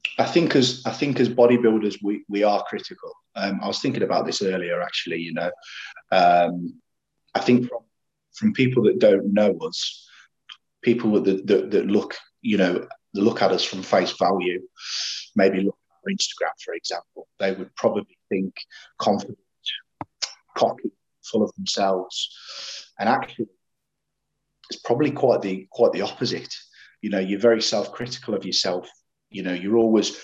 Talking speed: 160 wpm